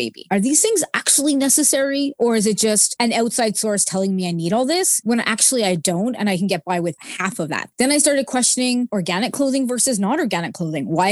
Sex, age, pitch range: female, 20-39, 180-240 Hz